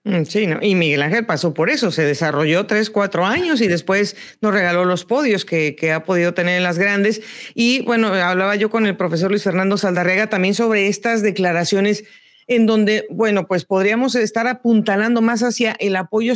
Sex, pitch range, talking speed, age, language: female, 180-220 Hz, 190 wpm, 40-59, Spanish